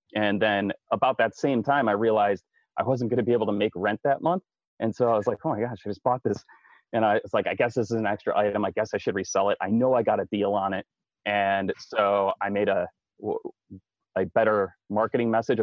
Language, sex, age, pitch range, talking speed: English, male, 30-49, 100-120 Hz, 250 wpm